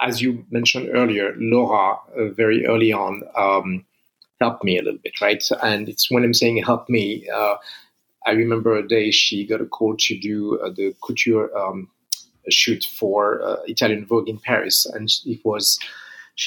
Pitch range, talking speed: 110-130 Hz, 180 wpm